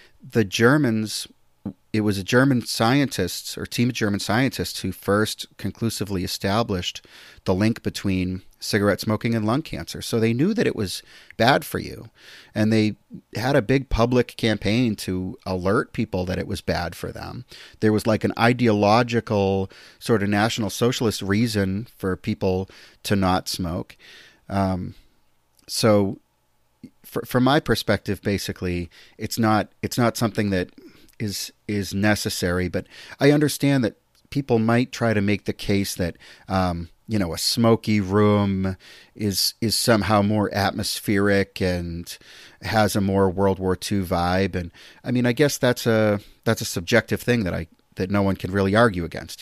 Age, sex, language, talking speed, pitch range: 30-49, male, English, 160 wpm, 95-115 Hz